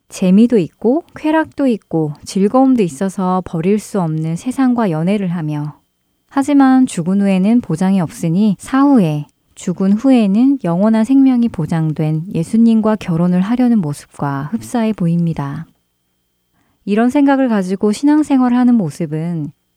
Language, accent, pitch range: Korean, native, 165-230 Hz